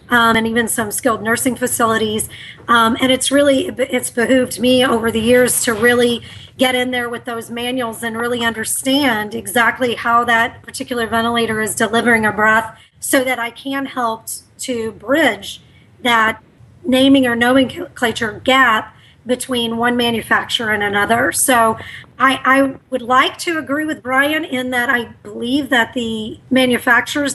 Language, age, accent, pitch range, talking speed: English, 40-59, American, 230-260 Hz, 155 wpm